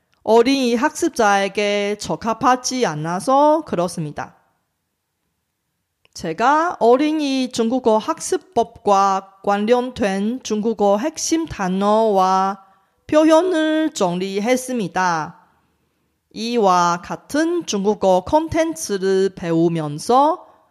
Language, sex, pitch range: Korean, female, 190-265 Hz